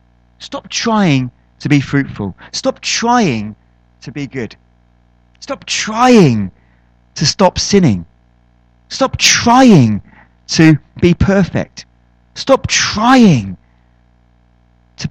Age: 30-49